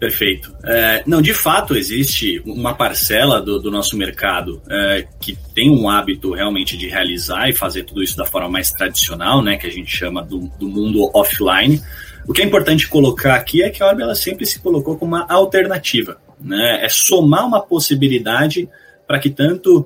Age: 20-39